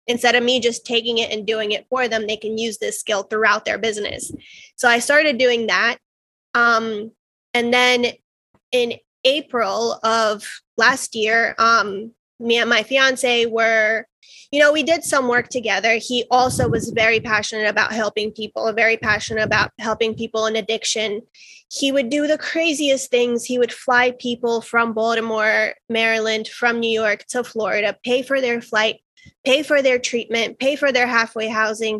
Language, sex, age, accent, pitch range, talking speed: English, female, 20-39, American, 220-245 Hz, 170 wpm